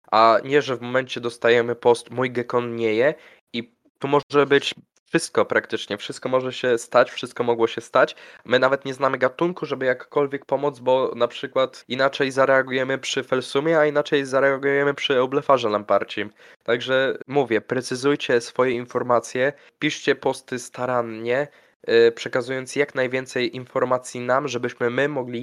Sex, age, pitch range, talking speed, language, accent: male, 20-39, 120-140 Hz, 145 wpm, Polish, native